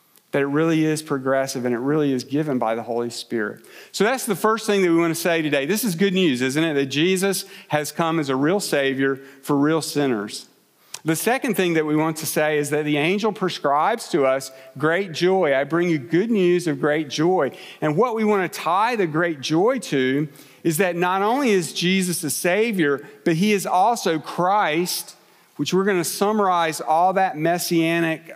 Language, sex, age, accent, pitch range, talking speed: English, male, 40-59, American, 145-185 Hz, 205 wpm